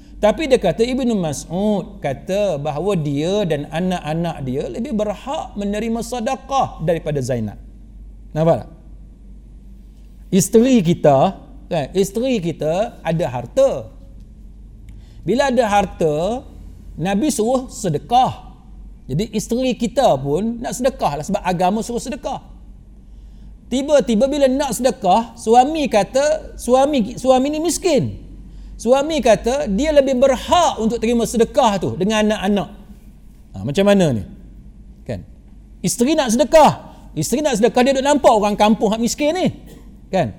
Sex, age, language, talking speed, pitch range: male, 50-69, Malay, 125 wpm, 165-255 Hz